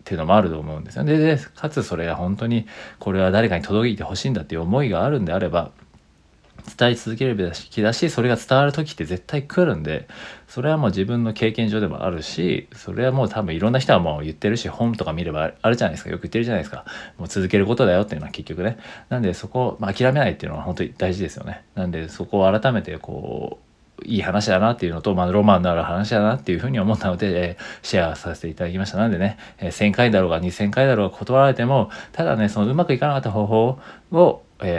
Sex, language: male, Japanese